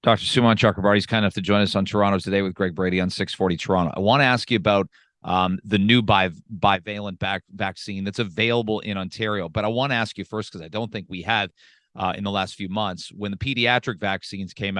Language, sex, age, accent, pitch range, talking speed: English, male, 40-59, American, 100-120 Hz, 235 wpm